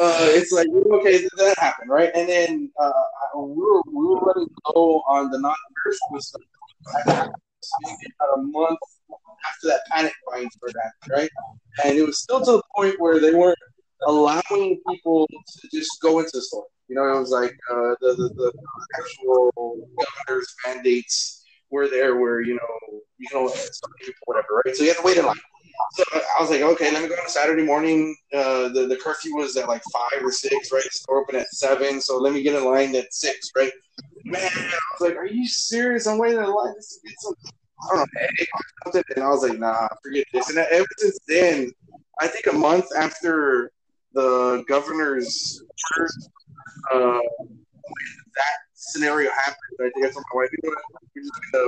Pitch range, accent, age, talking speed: 130-210 Hz, American, 20-39, 195 wpm